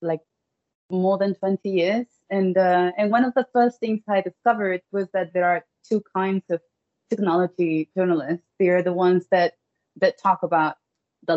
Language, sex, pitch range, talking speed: English, female, 180-225 Hz, 175 wpm